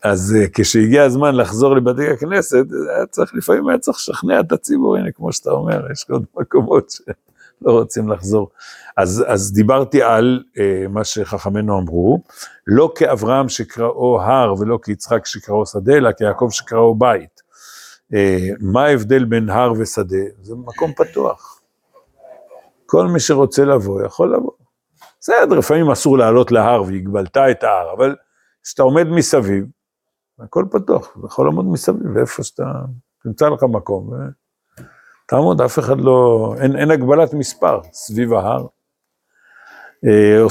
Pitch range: 105-135 Hz